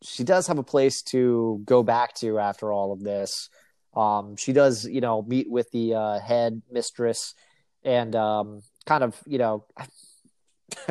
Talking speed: 165 wpm